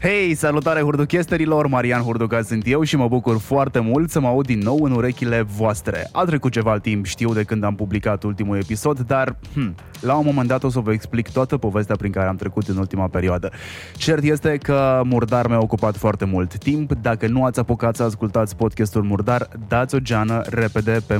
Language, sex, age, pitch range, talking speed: Romanian, male, 20-39, 105-135 Hz, 200 wpm